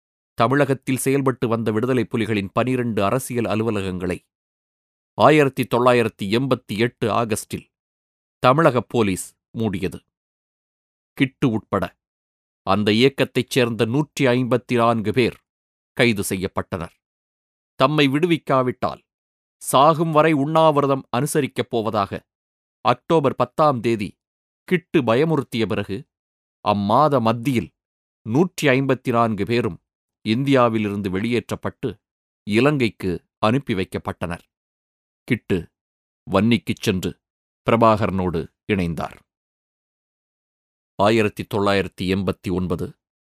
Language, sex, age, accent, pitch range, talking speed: Tamil, male, 30-49, native, 95-130 Hz, 75 wpm